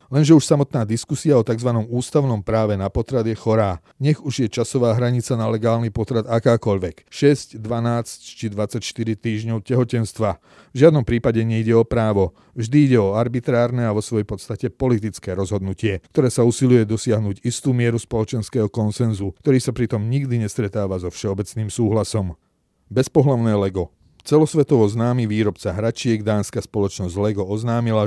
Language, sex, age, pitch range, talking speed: Slovak, male, 40-59, 105-125 Hz, 145 wpm